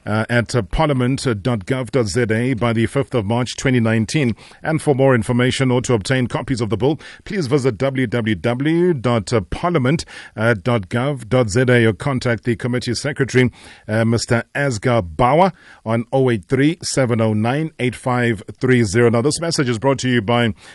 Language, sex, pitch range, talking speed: English, male, 115-130 Hz, 125 wpm